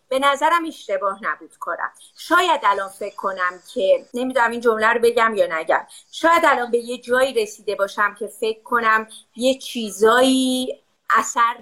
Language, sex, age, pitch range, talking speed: Persian, female, 30-49, 215-320 Hz, 155 wpm